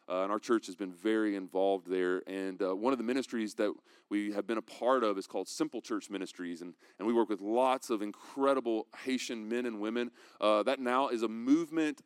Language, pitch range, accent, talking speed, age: English, 110-135 Hz, American, 225 wpm, 30-49